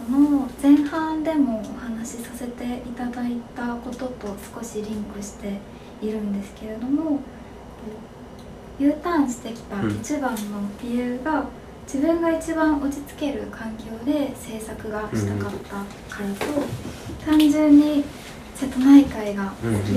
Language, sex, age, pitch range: Japanese, female, 20-39, 220-275 Hz